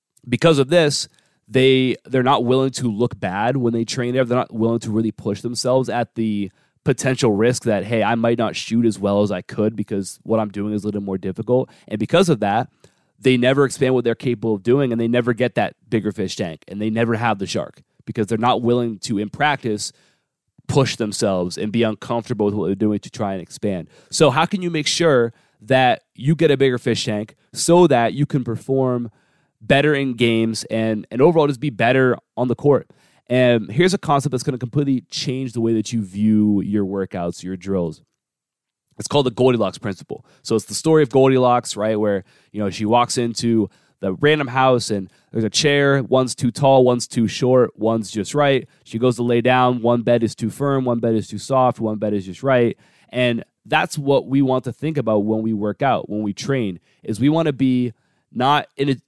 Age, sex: 30-49, male